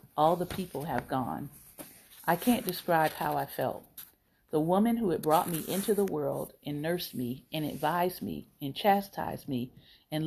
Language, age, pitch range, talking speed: English, 40-59, 150-175 Hz, 175 wpm